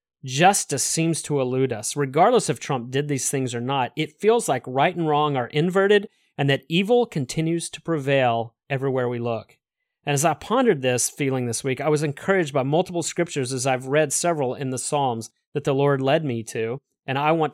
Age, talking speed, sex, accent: 30-49, 205 wpm, male, American